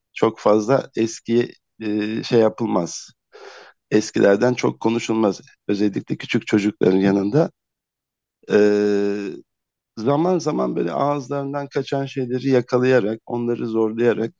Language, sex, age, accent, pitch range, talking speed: Turkish, male, 50-69, native, 100-120 Hz, 95 wpm